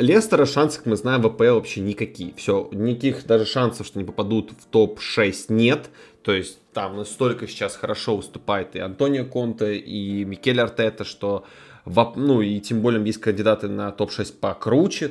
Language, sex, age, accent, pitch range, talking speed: Russian, male, 20-39, native, 110-140 Hz, 165 wpm